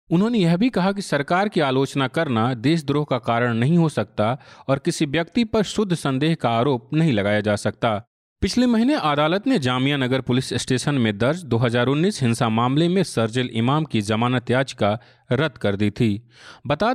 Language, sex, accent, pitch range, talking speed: Hindi, male, native, 120-165 Hz, 180 wpm